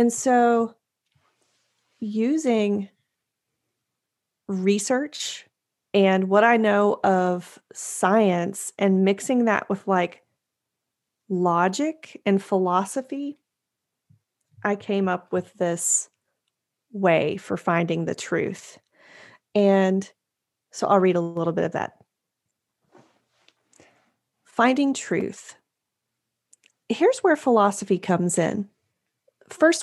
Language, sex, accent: English, female, American